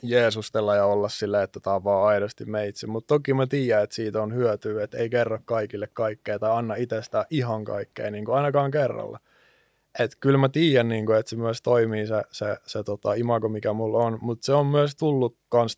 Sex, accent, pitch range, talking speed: male, native, 105-120 Hz, 205 wpm